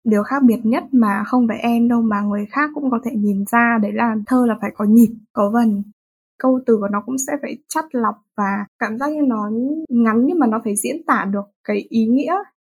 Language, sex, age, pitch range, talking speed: Vietnamese, female, 20-39, 215-270 Hz, 240 wpm